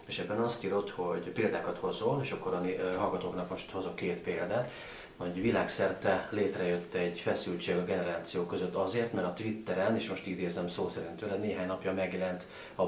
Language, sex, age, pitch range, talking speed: Hungarian, male, 30-49, 85-105 Hz, 175 wpm